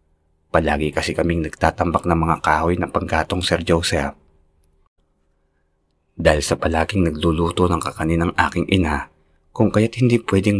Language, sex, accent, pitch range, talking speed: Filipino, male, native, 80-105 Hz, 130 wpm